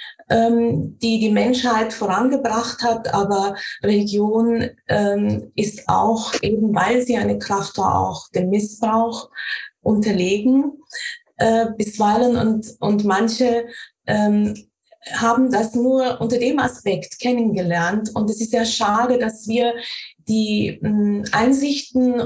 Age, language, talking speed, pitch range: 20-39, German, 105 wpm, 210-250 Hz